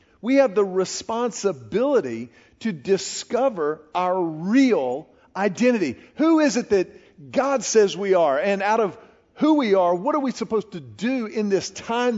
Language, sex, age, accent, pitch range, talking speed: English, male, 50-69, American, 195-250 Hz, 160 wpm